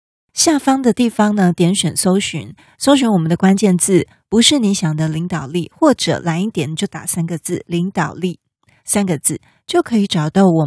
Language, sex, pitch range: Chinese, female, 170-220 Hz